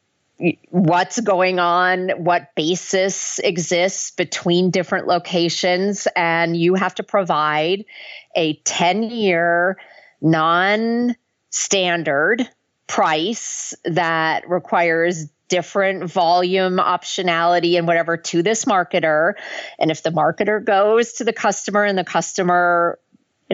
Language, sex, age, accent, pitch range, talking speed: English, female, 40-59, American, 160-190 Hz, 105 wpm